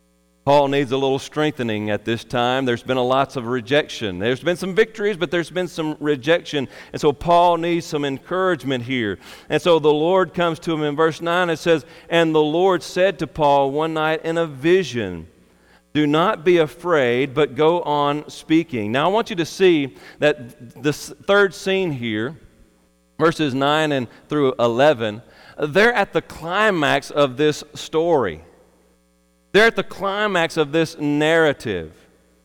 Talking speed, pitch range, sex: 170 wpm, 135-180 Hz, male